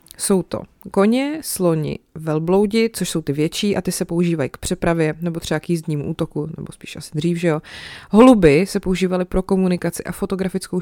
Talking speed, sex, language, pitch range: 185 wpm, female, Czech, 165-195 Hz